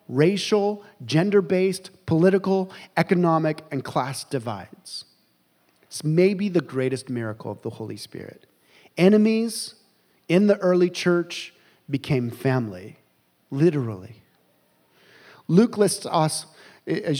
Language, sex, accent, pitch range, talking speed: English, male, American, 140-190 Hz, 100 wpm